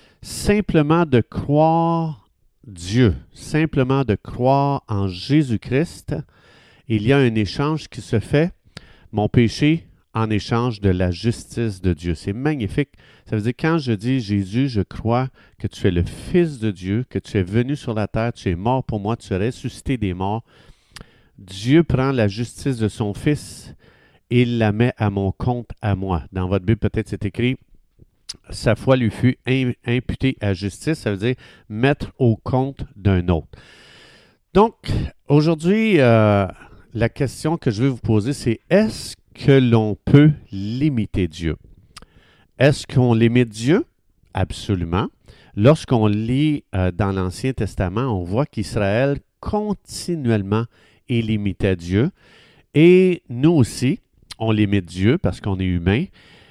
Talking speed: 155 wpm